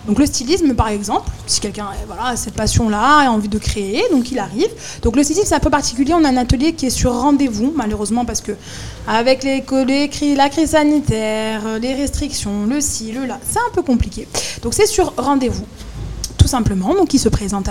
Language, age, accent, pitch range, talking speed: French, 20-39, French, 215-280 Hz, 210 wpm